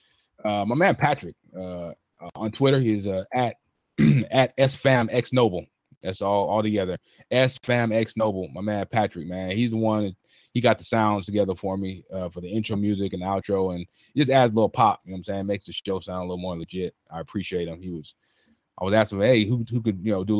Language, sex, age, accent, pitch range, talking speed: English, male, 20-39, American, 95-115 Hz, 230 wpm